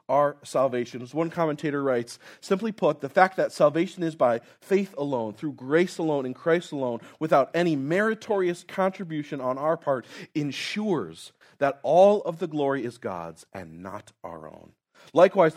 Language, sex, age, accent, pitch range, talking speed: English, male, 40-59, American, 120-170 Hz, 160 wpm